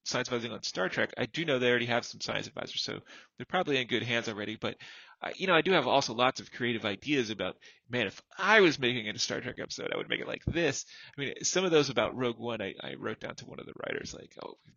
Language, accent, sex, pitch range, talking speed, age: English, American, male, 110-145 Hz, 285 wpm, 30-49